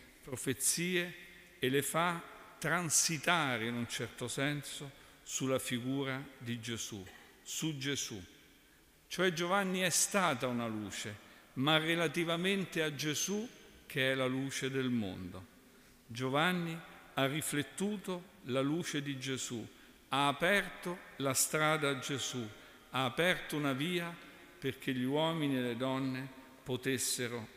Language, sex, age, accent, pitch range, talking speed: Italian, male, 50-69, native, 130-170 Hz, 120 wpm